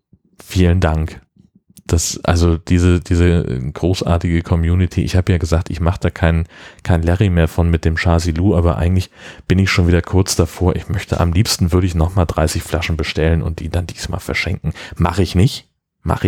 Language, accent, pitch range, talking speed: German, German, 80-95 Hz, 185 wpm